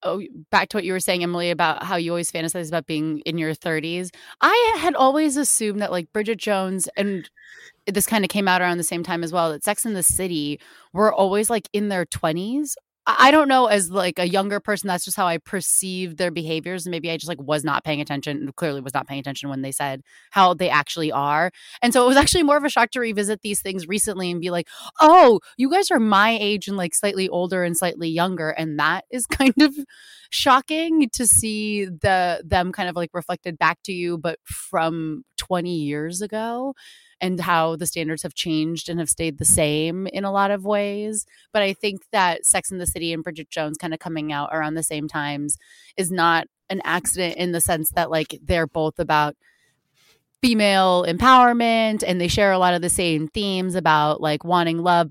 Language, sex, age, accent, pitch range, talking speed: English, female, 20-39, American, 165-205 Hz, 215 wpm